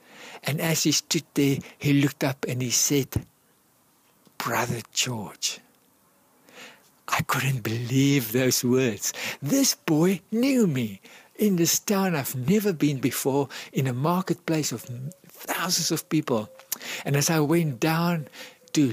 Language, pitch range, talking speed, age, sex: English, 130-165 Hz, 135 wpm, 60-79, male